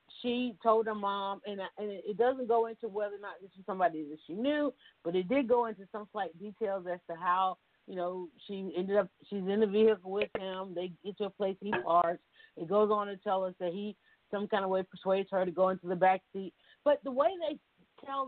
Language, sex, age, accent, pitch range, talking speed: English, female, 40-59, American, 180-235 Hz, 240 wpm